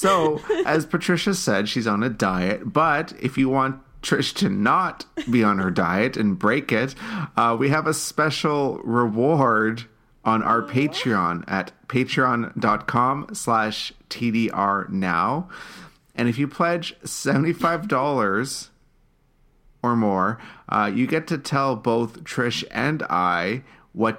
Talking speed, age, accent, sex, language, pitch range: 130 wpm, 30-49, American, male, English, 100-135 Hz